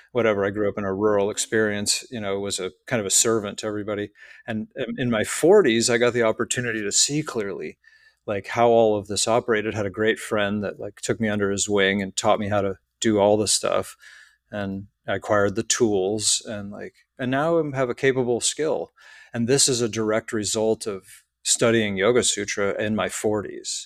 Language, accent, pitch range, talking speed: English, American, 100-120 Hz, 205 wpm